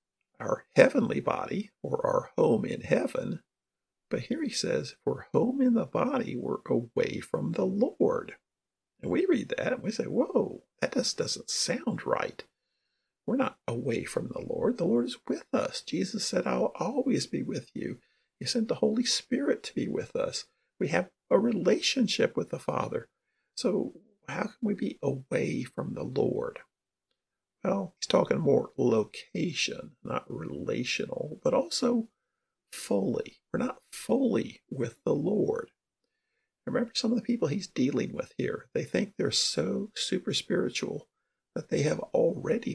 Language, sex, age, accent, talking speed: English, male, 50-69, American, 160 wpm